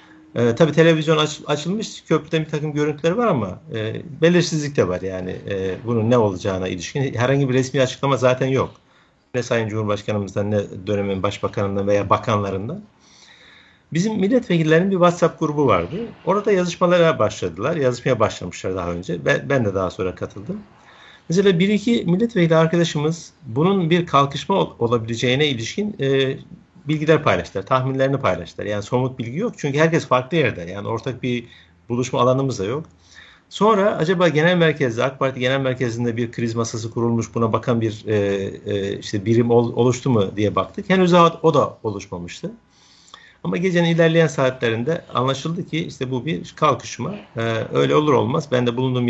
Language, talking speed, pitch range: Turkish, 160 wpm, 110-160 Hz